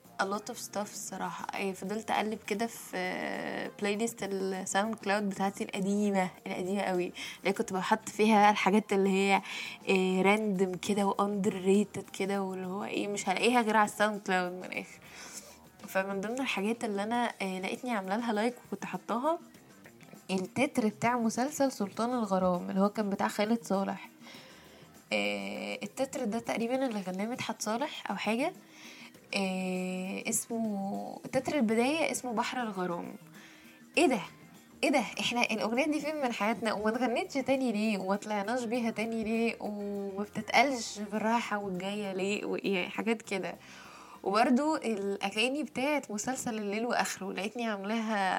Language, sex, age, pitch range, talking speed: Arabic, female, 10-29, 195-235 Hz, 140 wpm